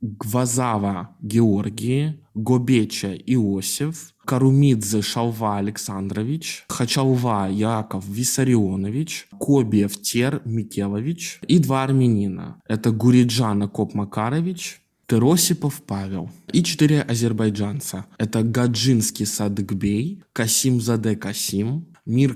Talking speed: 85 wpm